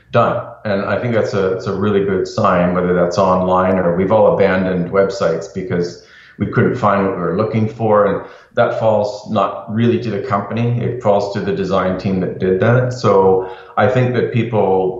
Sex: male